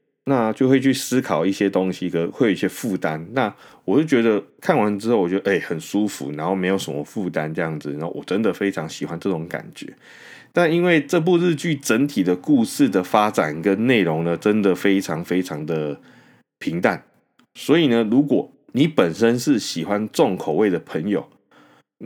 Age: 20-39